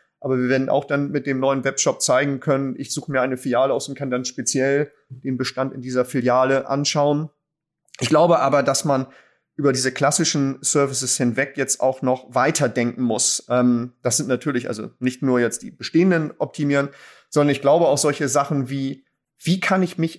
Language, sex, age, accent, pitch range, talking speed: German, male, 30-49, German, 135-165 Hz, 185 wpm